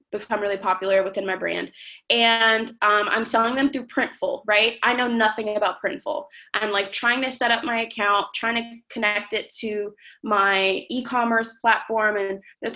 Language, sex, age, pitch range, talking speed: English, female, 20-39, 210-255 Hz, 175 wpm